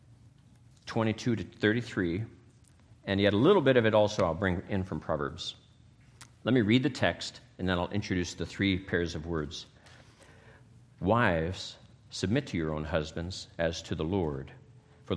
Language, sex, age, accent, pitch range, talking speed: English, male, 50-69, American, 90-120 Hz, 160 wpm